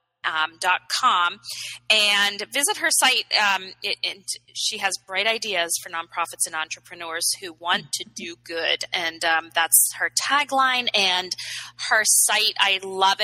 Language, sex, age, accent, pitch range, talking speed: English, female, 20-39, American, 170-220 Hz, 150 wpm